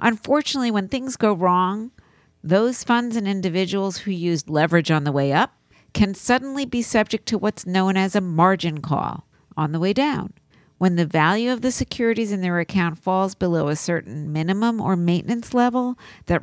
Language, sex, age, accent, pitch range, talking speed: English, female, 50-69, American, 175-250 Hz, 180 wpm